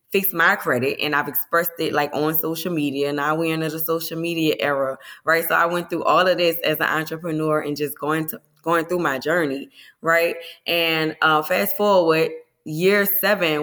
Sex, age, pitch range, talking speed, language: female, 20-39, 155-180 Hz, 195 wpm, English